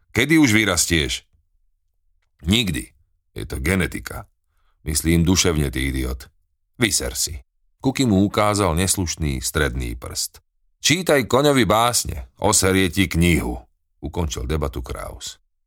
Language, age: Slovak, 40-59